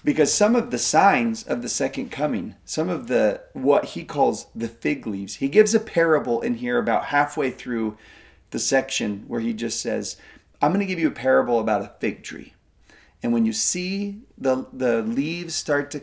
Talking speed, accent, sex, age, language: 200 wpm, American, male, 30-49, English